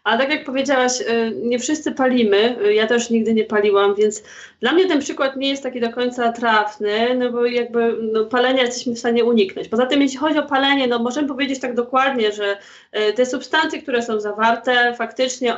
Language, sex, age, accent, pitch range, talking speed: Polish, female, 20-39, native, 215-260 Hz, 195 wpm